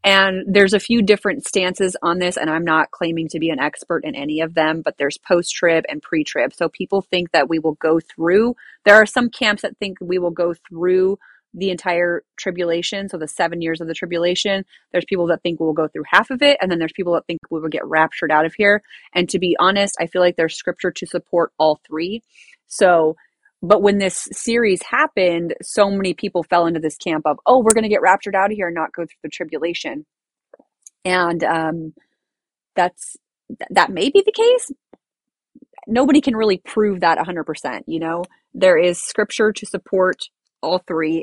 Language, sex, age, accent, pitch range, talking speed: English, female, 30-49, American, 165-205 Hz, 205 wpm